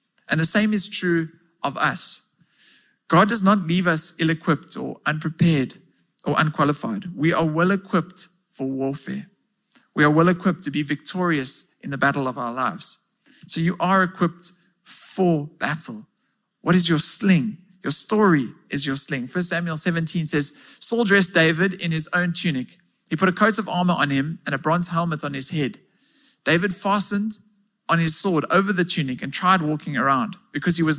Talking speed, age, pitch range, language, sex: 175 wpm, 50-69, 160-200 Hz, English, male